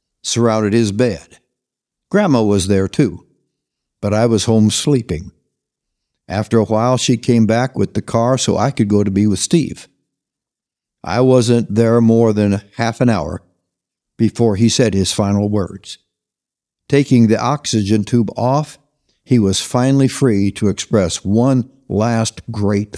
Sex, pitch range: male, 100-120 Hz